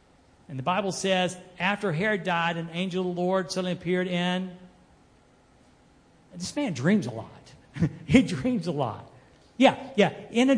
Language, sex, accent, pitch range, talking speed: English, male, American, 170-255 Hz, 160 wpm